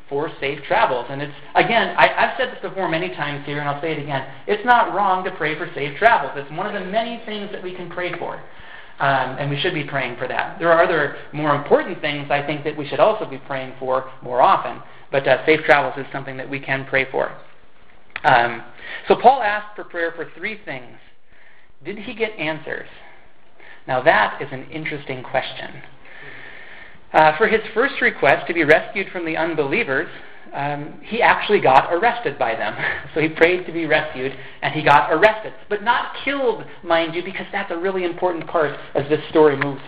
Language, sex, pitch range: English, male, 145-180 Hz